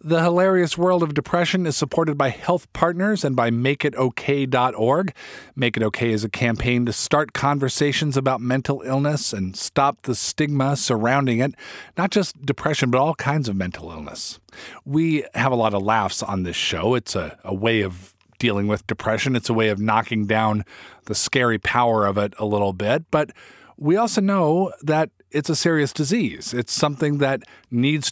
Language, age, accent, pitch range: English, 40-59, American, 110-150 Hz